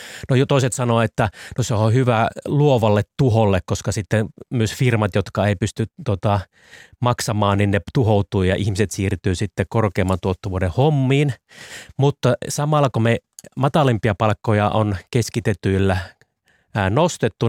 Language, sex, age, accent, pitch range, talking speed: Finnish, male, 30-49, native, 100-120 Hz, 130 wpm